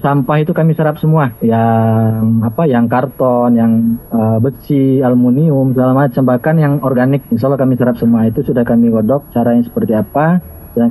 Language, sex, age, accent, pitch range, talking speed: Indonesian, male, 30-49, native, 140-185 Hz, 175 wpm